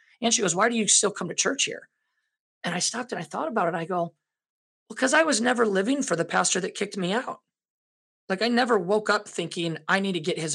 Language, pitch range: English, 155-205 Hz